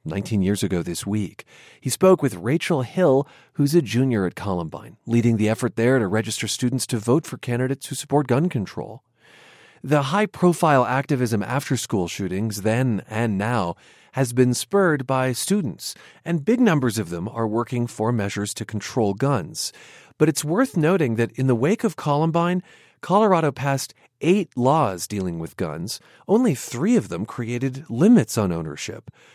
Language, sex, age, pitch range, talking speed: English, male, 40-59, 115-150 Hz, 165 wpm